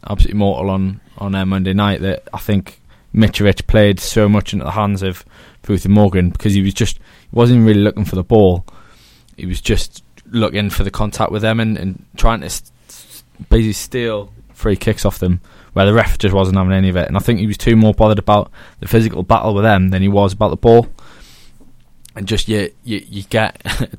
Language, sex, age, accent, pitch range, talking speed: English, male, 20-39, British, 95-110 Hz, 225 wpm